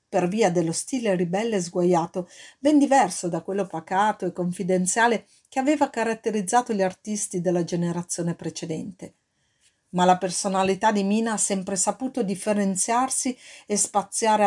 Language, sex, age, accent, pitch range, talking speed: Italian, female, 50-69, native, 180-235 Hz, 135 wpm